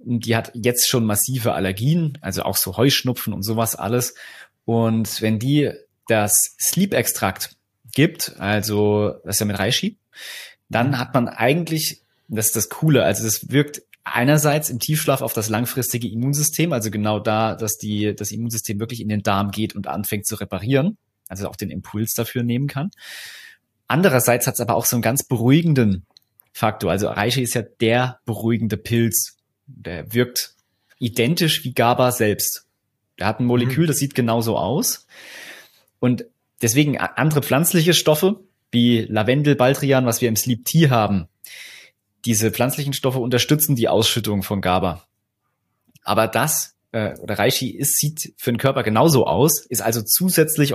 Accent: German